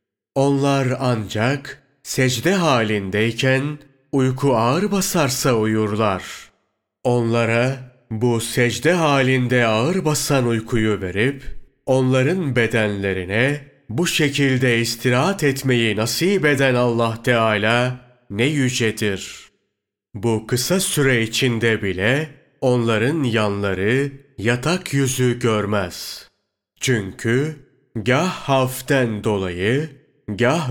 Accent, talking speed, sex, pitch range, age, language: native, 85 wpm, male, 115-140 Hz, 40-59, Turkish